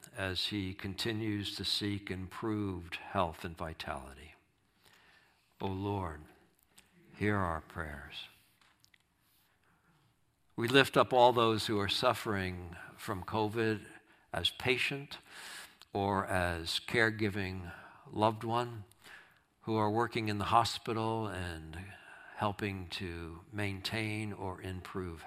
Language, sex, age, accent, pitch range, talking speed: English, male, 60-79, American, 90-105 Hz, 100 wpm